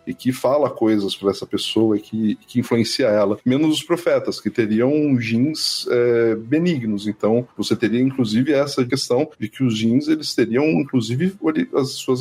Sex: male